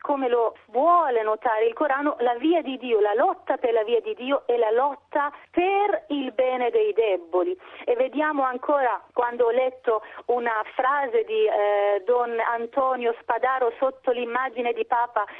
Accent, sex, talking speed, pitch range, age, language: native, female, 165 wpm, 245-335 Hz, 30-49, Italian